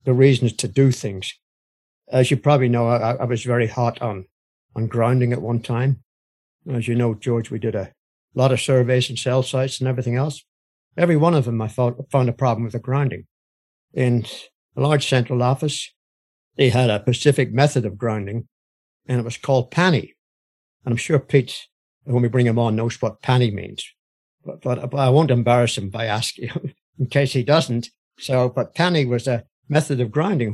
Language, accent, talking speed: English, British, 195 wpm